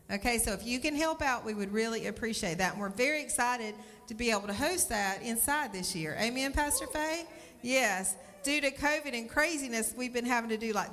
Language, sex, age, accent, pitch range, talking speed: English, female, 40-59, American, 220-275 Hz, 220 wpm